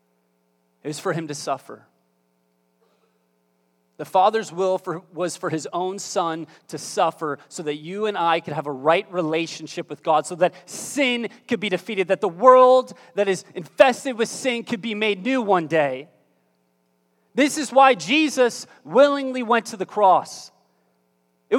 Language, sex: English, male